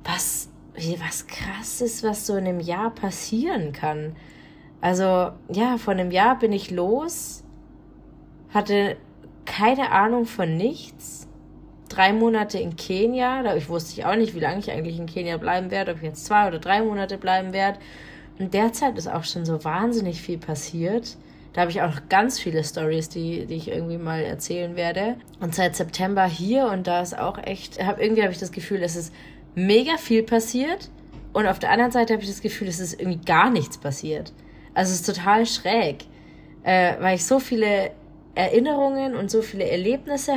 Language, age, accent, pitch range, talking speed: German, 20-39, German, 170-220 Hz, 180 wpm